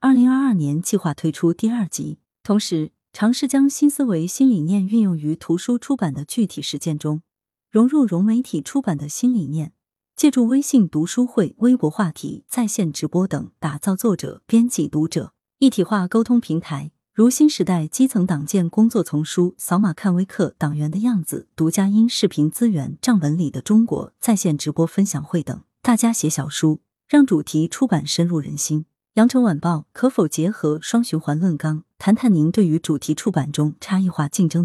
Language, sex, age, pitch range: Chinese, female, 30-49, 155-230 Hz